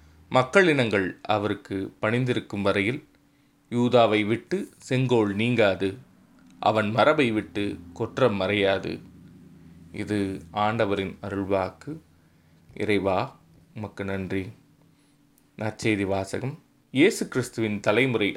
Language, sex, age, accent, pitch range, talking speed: Tamil, male, 20-39, native, 100-130 Hz, 80 wpm